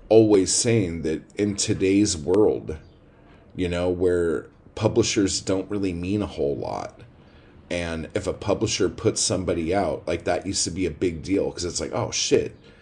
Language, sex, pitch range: English, male, 90-105 Hz